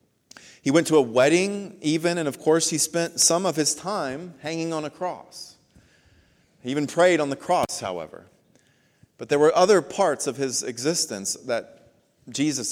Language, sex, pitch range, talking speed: English, male, 110-150 Hz, 170 wpm